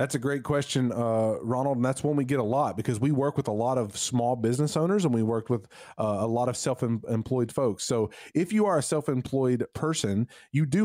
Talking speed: 240 wpm